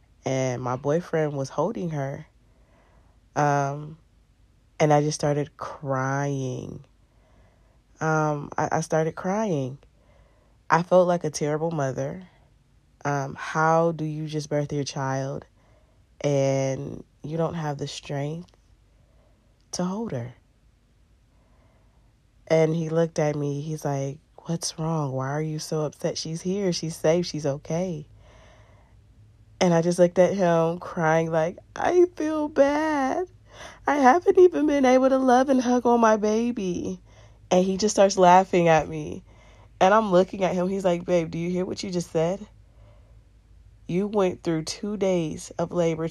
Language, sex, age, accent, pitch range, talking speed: English, female, 20-39, American, 130-175 Hz, 145 wpm